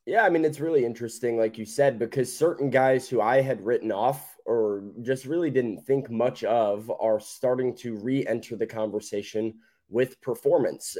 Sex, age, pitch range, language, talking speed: male, 20-39, 115-140 Hz, English, 180 wpm